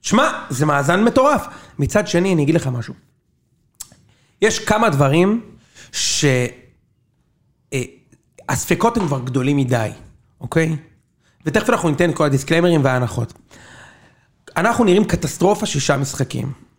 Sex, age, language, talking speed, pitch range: male, 40-59, Hebrew, 110 wpm, 140-195 Hz